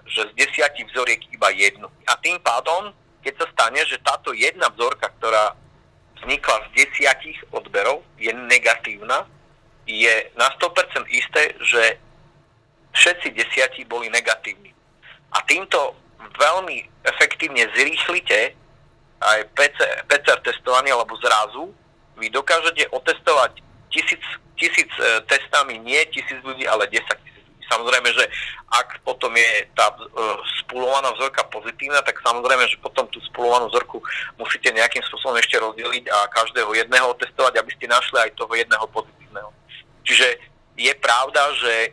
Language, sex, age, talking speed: Slovak, male, 50-69, 130 wpm